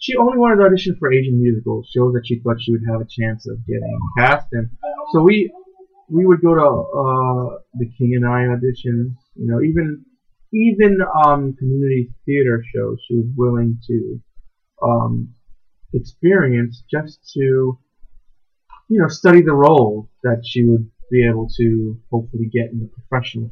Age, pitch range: 30-49, 120-150 Hz